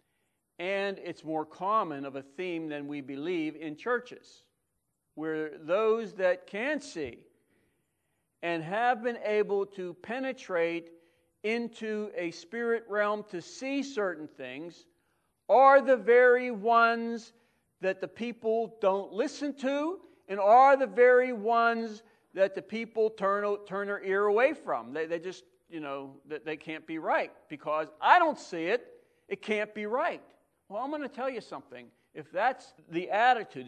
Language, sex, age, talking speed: English, male, 50-69, 150 wpm